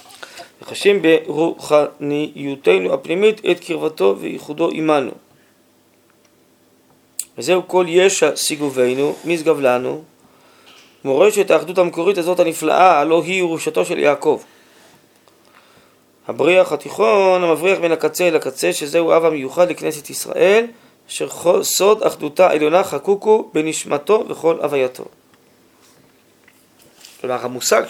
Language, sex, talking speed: Hebrew, male, 100 wpm